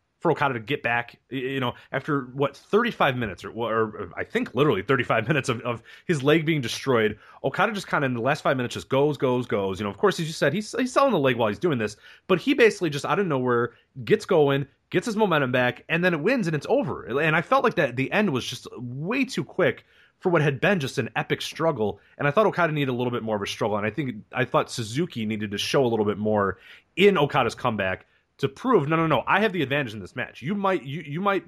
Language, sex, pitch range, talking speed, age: English, male, 115-160 Hz, 265 wpm, 30-49